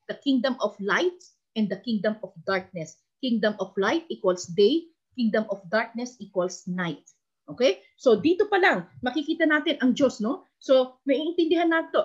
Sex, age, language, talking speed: female, 40-59, Filipino, 160 wpm